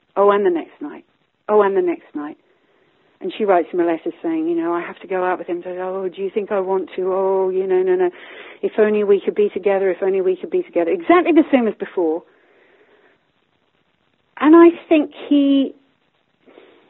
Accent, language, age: British, English, 40-59